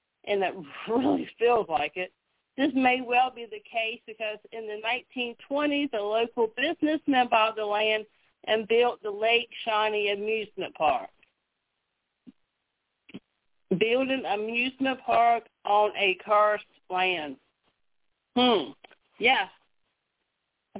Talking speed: 115 wpm